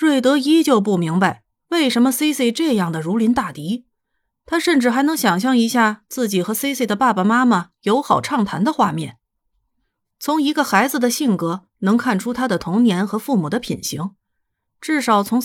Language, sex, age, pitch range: Chinese, female, 30-49, 190-260 Hz